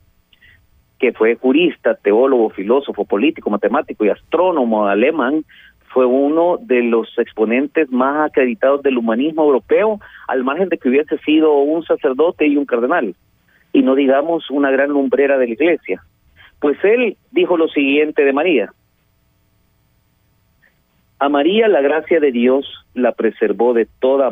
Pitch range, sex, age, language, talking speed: 110-145 Hz, male, 40-59, Spanish, 140 wpm